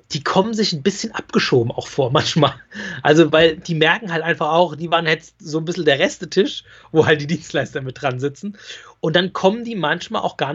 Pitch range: 155-190 Hz